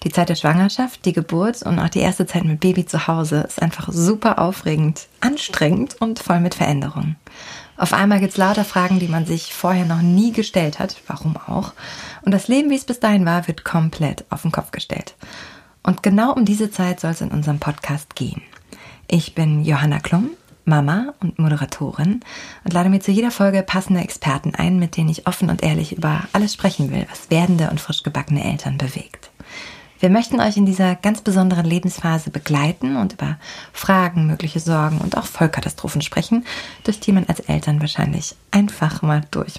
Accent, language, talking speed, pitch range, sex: German, German, 190 wpm, 155-190 Hz, female